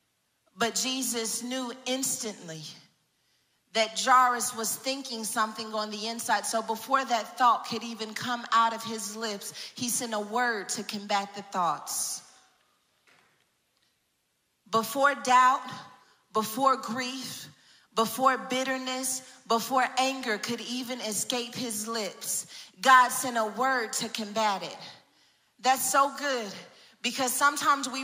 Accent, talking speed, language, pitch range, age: American, 120 wpm, English, 220-260 Hz, 40-59